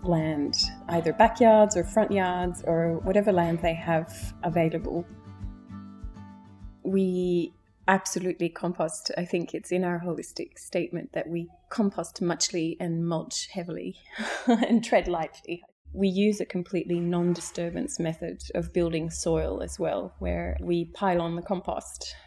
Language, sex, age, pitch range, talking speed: English, female, 20-39, 155-180 Hz, 130 wpm